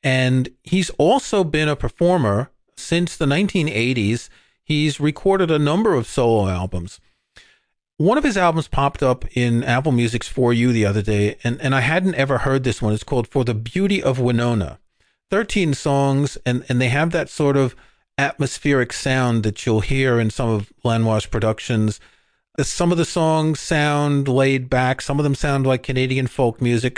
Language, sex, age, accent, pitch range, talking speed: English, male, 40-59, American, 115-150 Hz, 175 wpm